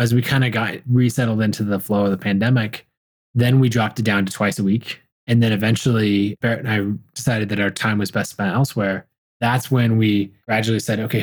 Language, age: English, 20-39